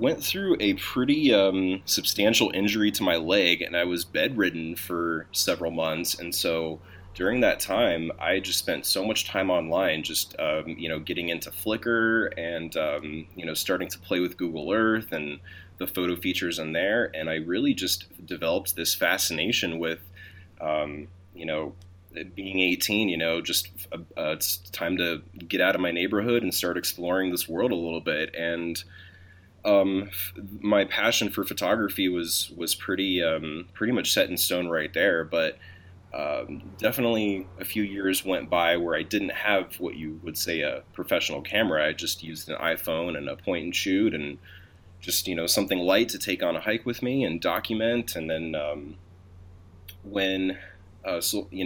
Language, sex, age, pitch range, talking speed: English, male, 20-39, 85-95 Hz, 175 wpm